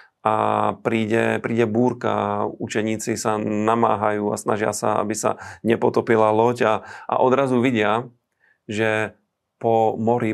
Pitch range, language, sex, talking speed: 105-115 Hz, Slovak, male, 120 wpm